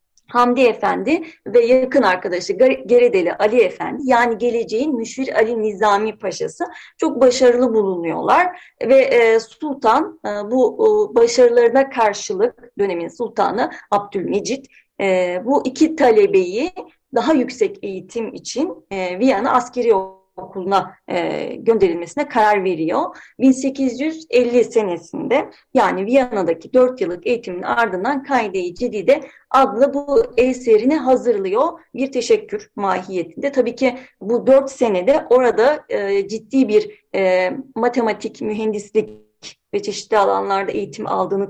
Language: Turkish